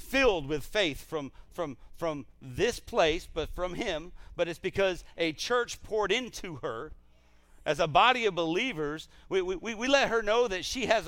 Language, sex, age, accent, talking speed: English, male, 50-69, American, 180 wpm